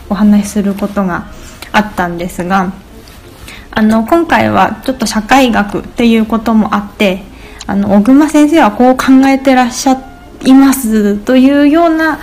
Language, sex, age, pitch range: Japanese, female, 20-39, 200-250 Hz